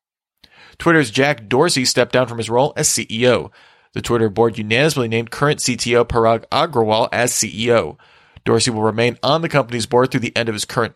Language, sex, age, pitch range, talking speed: English, male, 40-59, 115-145 Hz, 185 wpm